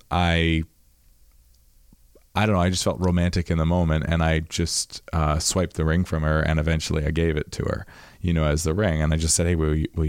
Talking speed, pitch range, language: 240 wpm, 80-95 Hz, English